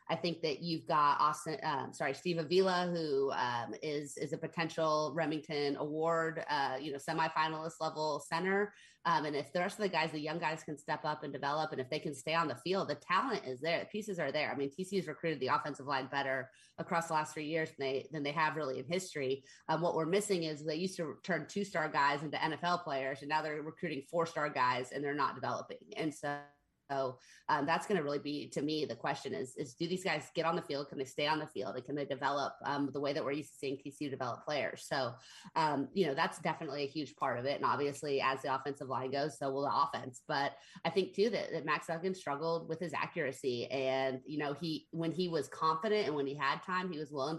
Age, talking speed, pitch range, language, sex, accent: 30-49, 245 wpm, 140-165 Hz, English, female, American